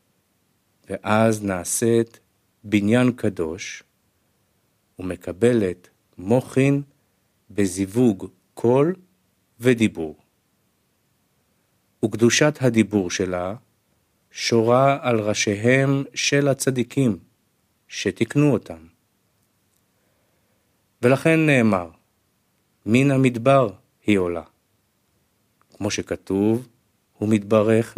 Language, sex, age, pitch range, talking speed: Hebrew, male, 50-69, 95-120 Hz, 60 wpm